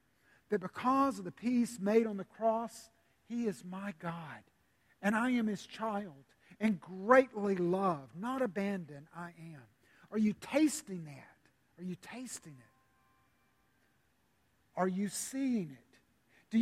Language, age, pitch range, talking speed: English, 50-69, 165-225 Hz, 135 wpm